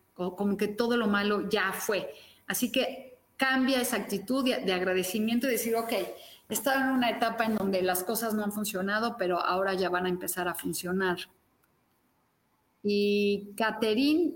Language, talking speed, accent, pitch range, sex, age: Spanish, 160 wpm, Mexican, 200-260 Hz, female, 40-59